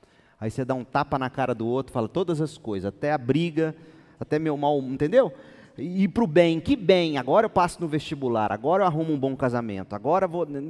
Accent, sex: Brazilian, male